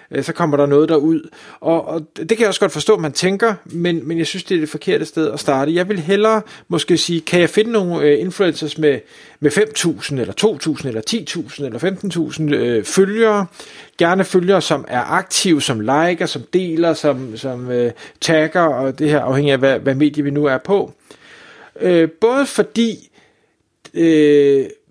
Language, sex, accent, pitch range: Danish, male, native, 145-180 Hz